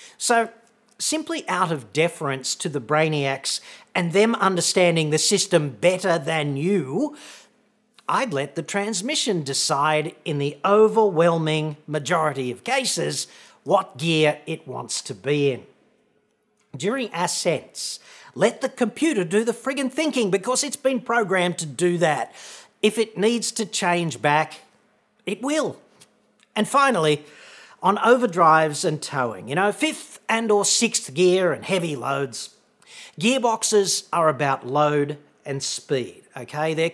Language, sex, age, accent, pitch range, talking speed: English, male, 40-59, Australian, 150-220 Hz, 135 wpm